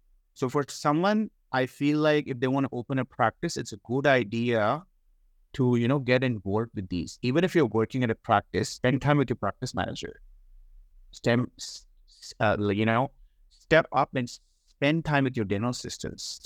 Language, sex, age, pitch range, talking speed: English, male, 30-49, 110-140 Hz, 180 wpm